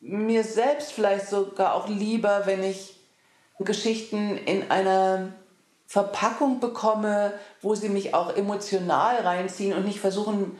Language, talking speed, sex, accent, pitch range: German, 125 wpm, female, German, 180-210 Hz